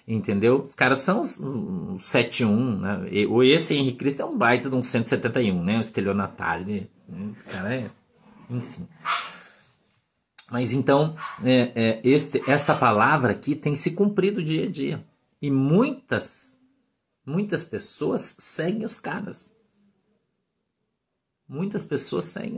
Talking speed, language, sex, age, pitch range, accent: 135 wpm, Portuguese, male, 50-69, 105-165 Hz, Brazilian